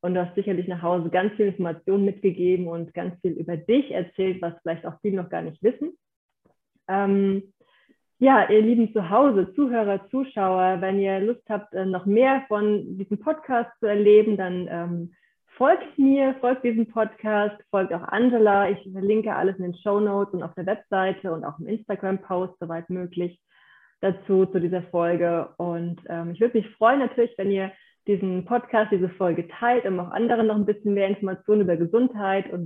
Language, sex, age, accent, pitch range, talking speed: German, female, 30-49, German, 175-210 Hz, 180 wpm